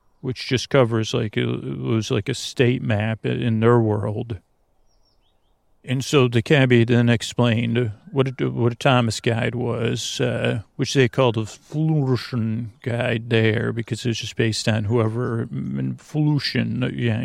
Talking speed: 155 wpm